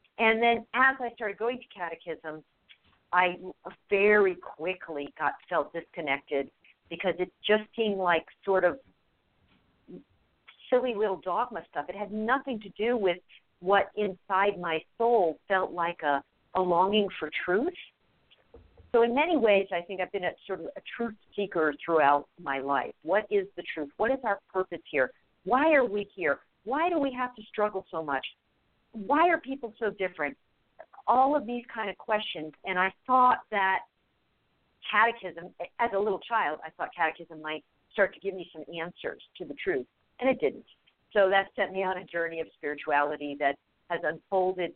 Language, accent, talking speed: English, American, 170 wpm